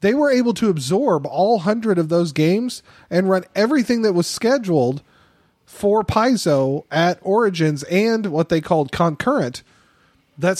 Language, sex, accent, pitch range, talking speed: English, male, American, 150-190 Hz, 145 wpm